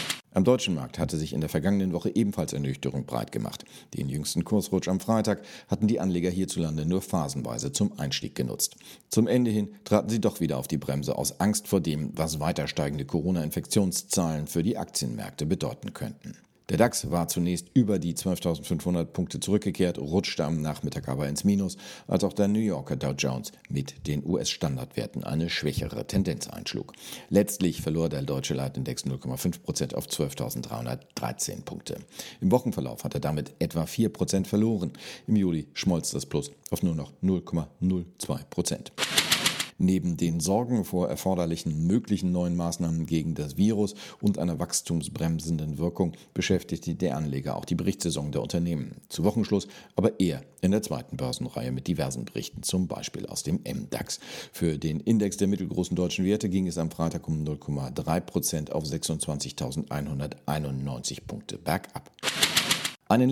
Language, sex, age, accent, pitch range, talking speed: German, male, 40-59, German, 75-95 Hz, 155 wpm